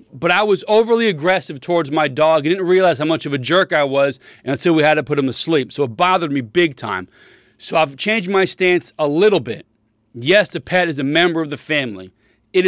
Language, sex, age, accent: English, male, 30-49, American